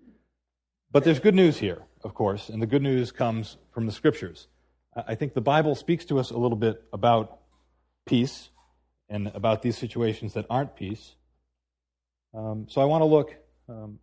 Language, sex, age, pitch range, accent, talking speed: English, male, 40-59, 95-130 Hz, American, 175 wpm